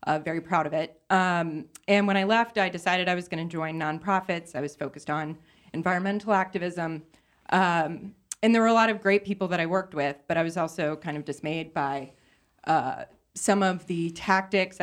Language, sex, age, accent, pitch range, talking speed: English, female, 20-39, American, 160-190 Hz, 200 wpm